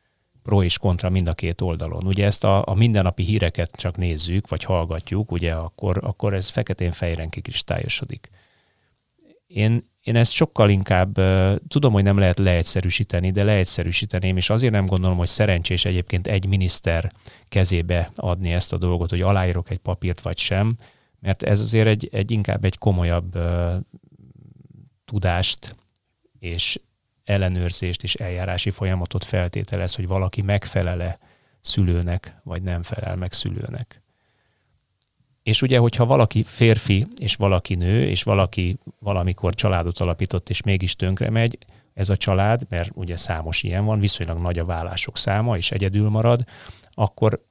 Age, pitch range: 30-49, 90-110 Hz